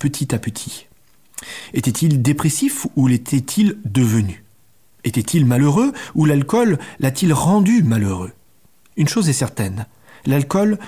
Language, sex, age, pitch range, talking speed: French, male, 40-59, 115-150 Hz, 110 wpm